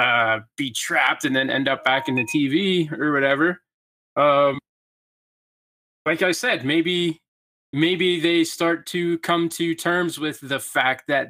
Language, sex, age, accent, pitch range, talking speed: English, male, 20-39, American, 130-160 Hz, 155 wpm